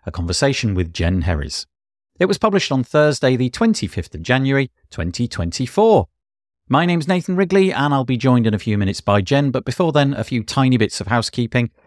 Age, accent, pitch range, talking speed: 50-69, British, 95-145 Hz, 190 wpm